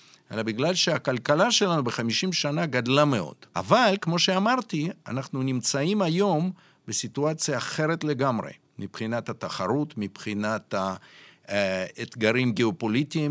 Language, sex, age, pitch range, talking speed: English, male, 50-69, 110-170 Hz, 100 wpm